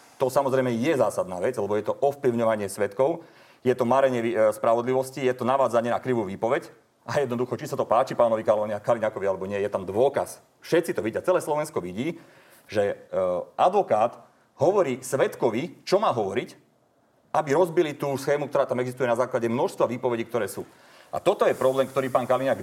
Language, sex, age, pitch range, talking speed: Slovak, male, 40-59, 115-135 Hz, 175 wpm